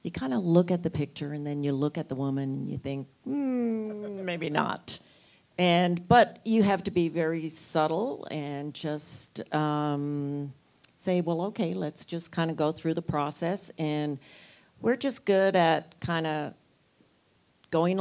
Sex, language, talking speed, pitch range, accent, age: female, English, 165 wpm, 145-170 Hz, American, 50-69